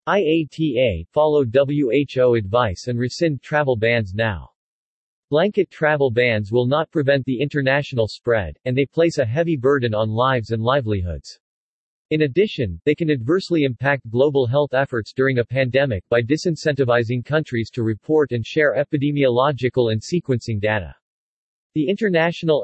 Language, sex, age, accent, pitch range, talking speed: English, male, 40-59, American, 120-150 Hz, 140 wpm